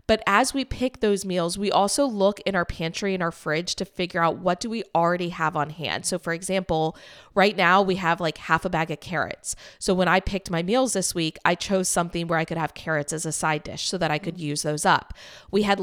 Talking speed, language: 255 wpm, English